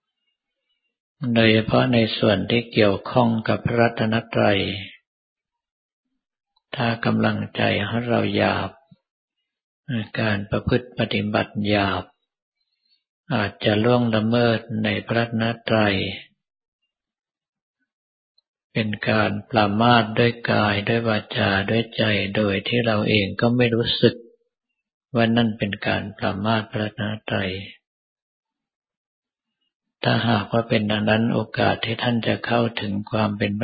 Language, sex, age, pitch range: Thai, male, 60-79, 105-120 Hz